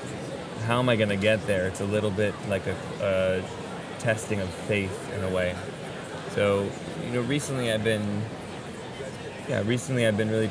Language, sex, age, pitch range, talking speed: English, male, 20-39, 100-115 Hz, 175 wpm